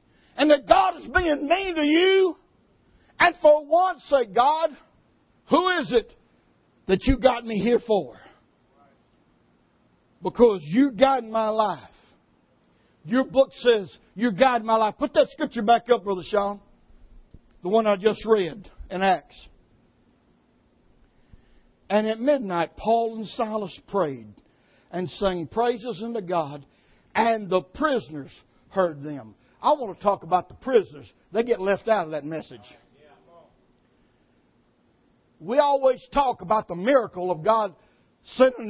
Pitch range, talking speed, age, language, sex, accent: 185-265 Hz, 135 wpm, 60-79, English, male, American